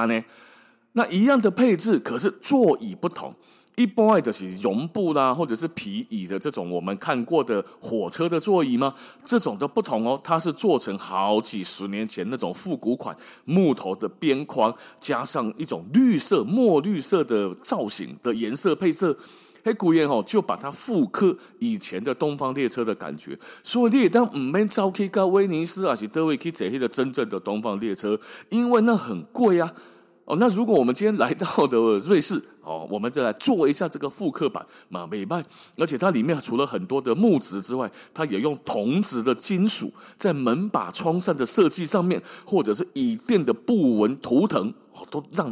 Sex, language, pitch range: male, Chinese, 130-215 Hz